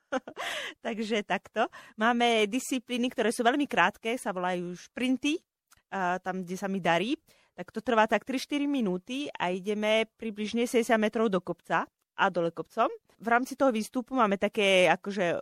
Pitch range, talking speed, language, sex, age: 190-235 Hz, 150 wpm, Slovak, female, 30-49